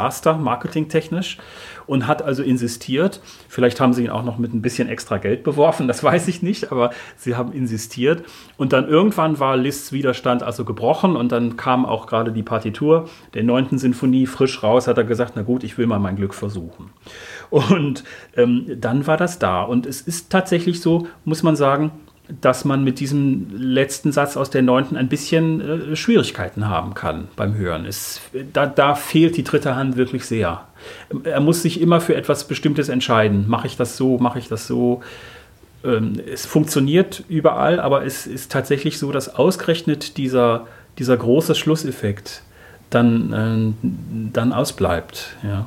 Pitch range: 115-150 Hz